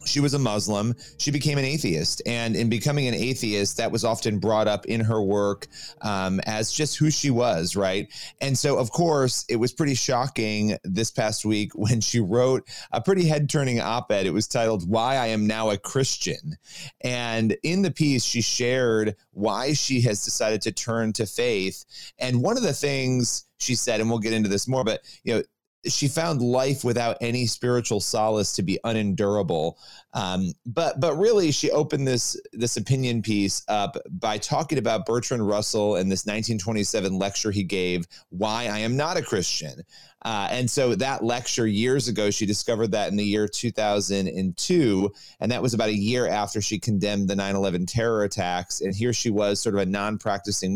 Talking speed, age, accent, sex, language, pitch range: 185 wpm, 30-49, American, male, English, 105-125 Hz